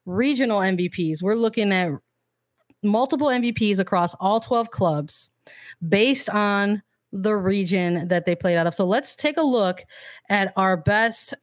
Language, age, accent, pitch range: English, 20-39, American, 180-230 Hz